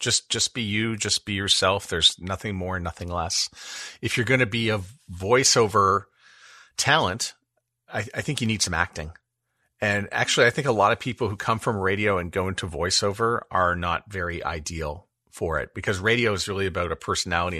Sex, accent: male, American